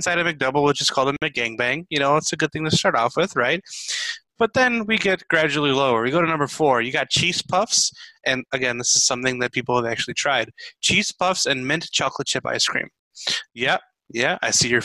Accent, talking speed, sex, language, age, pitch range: American, 235 wpm, male, English, 20-39, 125-155 Hz